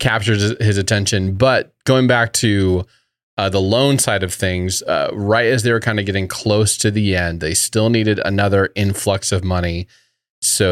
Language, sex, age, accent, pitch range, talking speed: English, male, 30-49, American, 95-115 Hz, 185 wpm